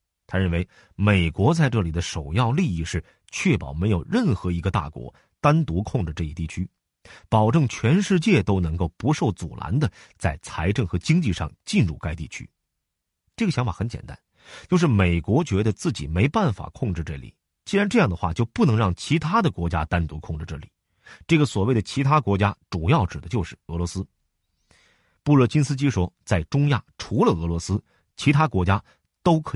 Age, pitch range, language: 30-49, 85-130 Hz, Chinese